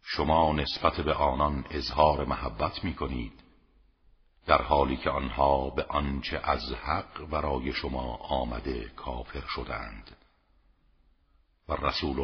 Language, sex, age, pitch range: Persian, male, 50-69, 70-85 Hz